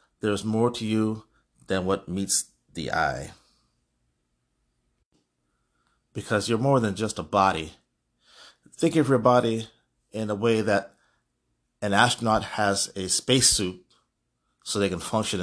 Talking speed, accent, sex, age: 130 wpm, American, male, 30-49